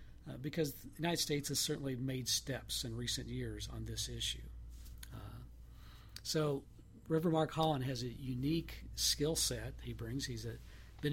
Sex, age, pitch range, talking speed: male, 50-69, 110-140 Hz, 155 wpm